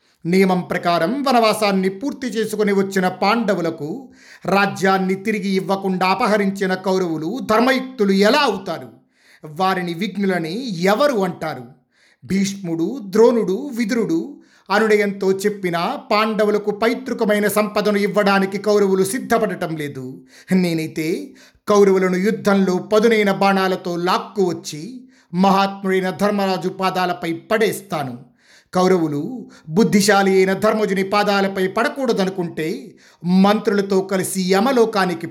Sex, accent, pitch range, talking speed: male, native, 185-215 Hz, 85 wpm